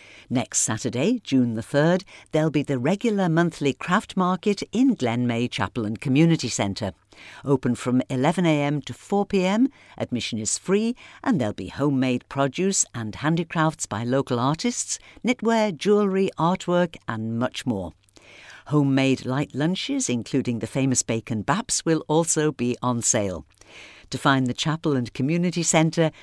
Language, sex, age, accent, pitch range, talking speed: English, female, 50-69, British, 125-180 Hz, 145 wpm